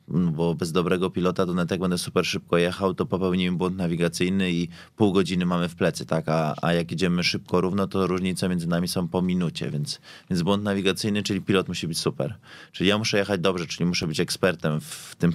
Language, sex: Polish, male